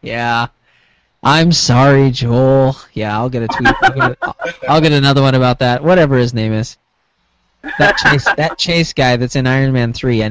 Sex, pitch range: male, 110-135 Hz